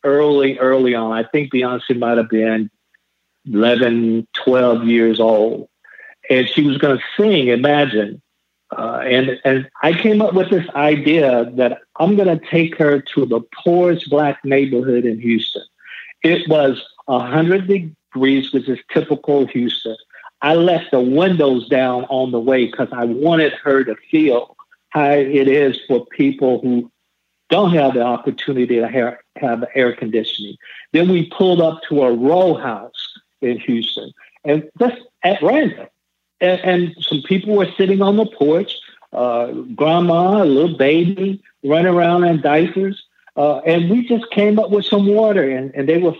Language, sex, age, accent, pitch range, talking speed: English, male, 50-69, American, 125-170 Hz, 160 wpm